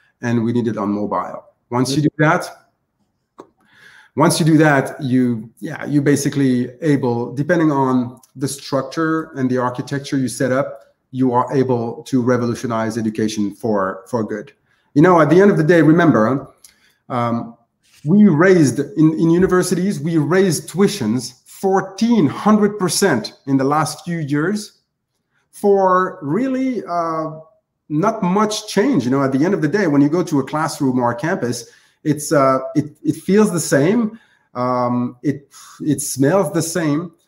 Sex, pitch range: male, 130-175 Hz